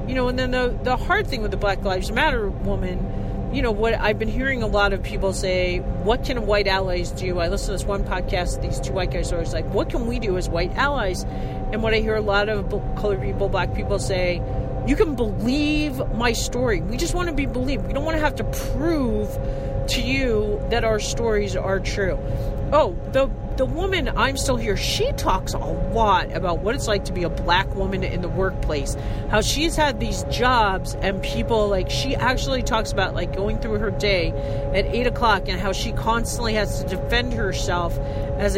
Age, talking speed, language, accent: 40-59, 215 wpm, English, American